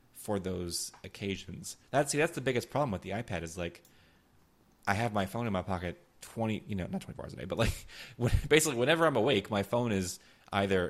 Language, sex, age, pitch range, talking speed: English, male, 30-49, 90-110 Hz, 220 wpm